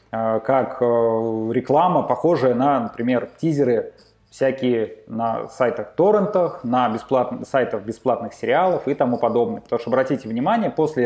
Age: 20-39